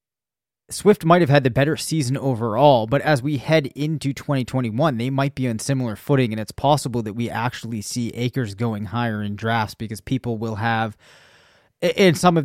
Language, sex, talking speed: English, male, 190 wpm